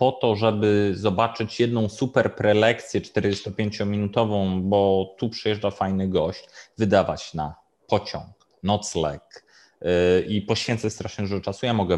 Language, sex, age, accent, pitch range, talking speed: Polish, male, 30-49, native, 100-120 Hz, 120 wpm